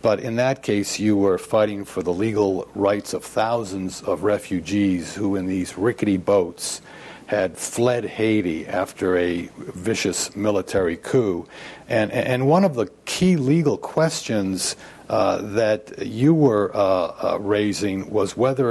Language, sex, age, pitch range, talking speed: English, male, 60-79, 100-130 Hz, 145 wpm